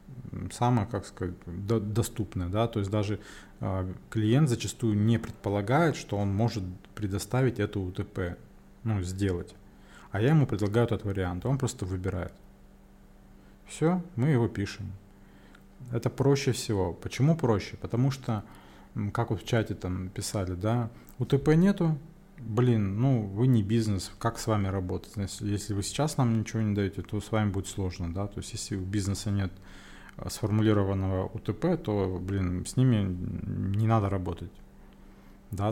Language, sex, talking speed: Russian, male, 145 wpm